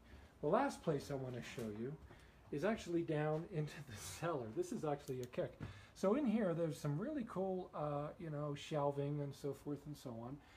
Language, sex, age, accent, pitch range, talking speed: English, male, 40-59, American, 130-170 Hz, 205 wpm